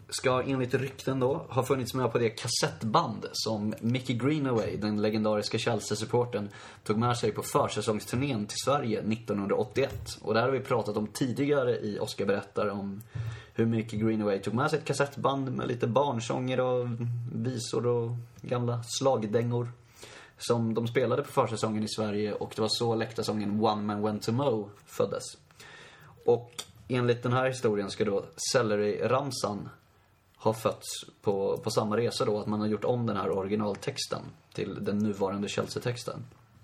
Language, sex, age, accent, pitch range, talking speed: Swedish, male, 30-49, native, 105-125 Hz, 160 wpm